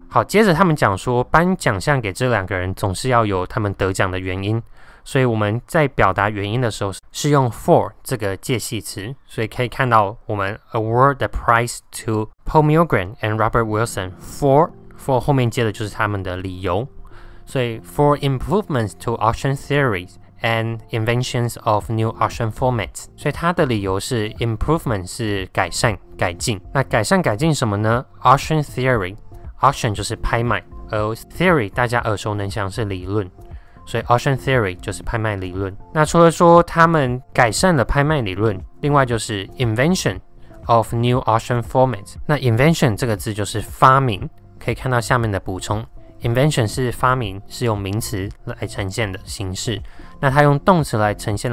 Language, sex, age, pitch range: Chinese, male, 20-39, 100-130 Hz